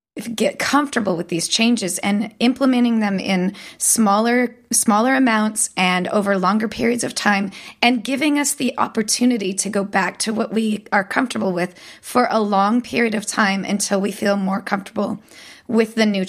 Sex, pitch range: female, 195-235 Hz